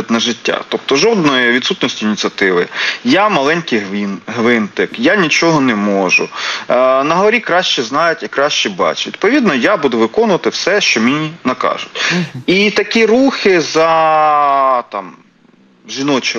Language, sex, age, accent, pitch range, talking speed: Ukrainian, male, 30-49, native, 130-210 Hz, 120 wpm